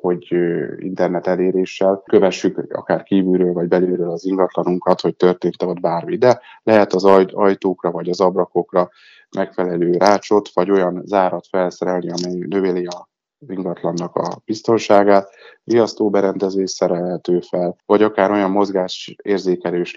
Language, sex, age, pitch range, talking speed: Hungarian, male, 20-39, 90-95 Hz, 125 wpm